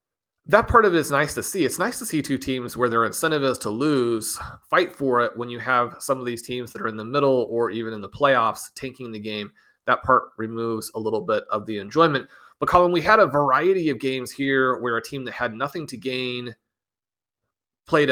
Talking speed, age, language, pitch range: 230 wpm, 30-49, English, 115-140 Hz